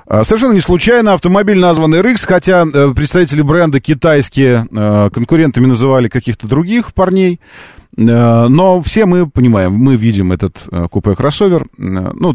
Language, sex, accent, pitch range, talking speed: Russian, male, native, 90-140 Hz, 115 wpm